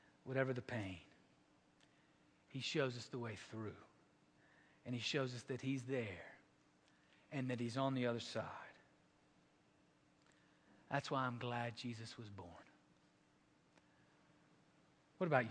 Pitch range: 125-195 Hz